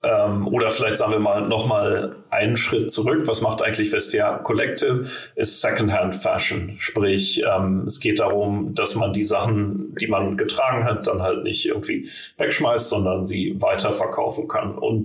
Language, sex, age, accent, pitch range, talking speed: German, male, 30-49, German, 95-120 Hz, 160 wpm